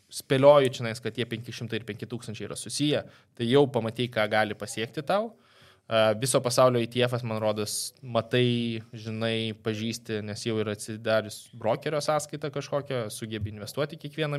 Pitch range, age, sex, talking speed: 110-125 Hz, 20-39, male, 140 wpm